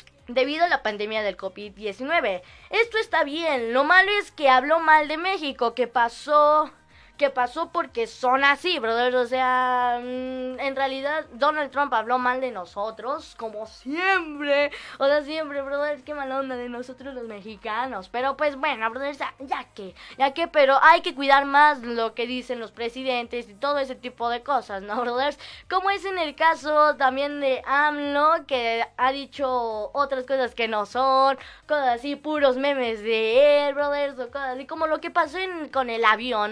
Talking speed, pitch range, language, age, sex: 180 wpm, 245-310 Hz, Spanish, 20-39, female